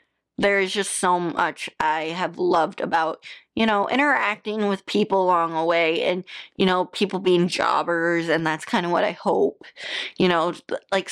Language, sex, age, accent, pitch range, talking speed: English, female, 20-39, American, 175-210 Hz, 180 wpm